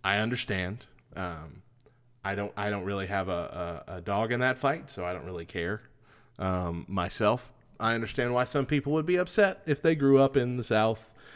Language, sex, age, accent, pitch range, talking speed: English, male, 30-49, American, 95-120 Hz, 200 wpm